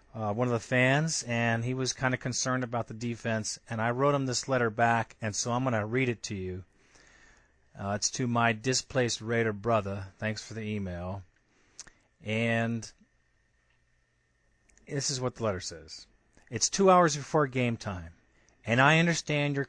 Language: English